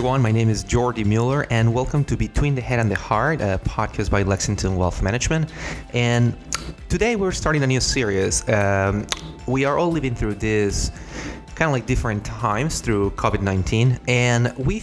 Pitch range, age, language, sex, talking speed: 95-120 Hz, 20-39, English, male, 175 wpm